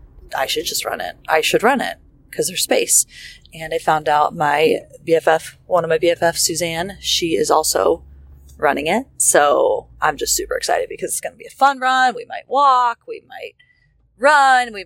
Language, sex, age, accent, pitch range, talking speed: English, female, 30-49, American, 170-280 Hz, 195 wpm